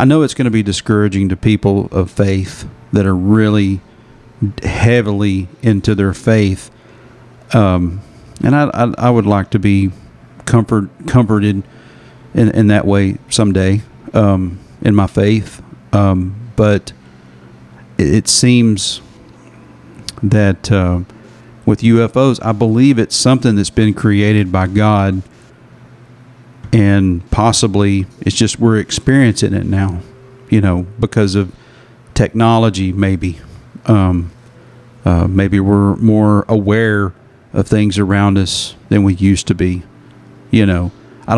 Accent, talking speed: American, 125 wpm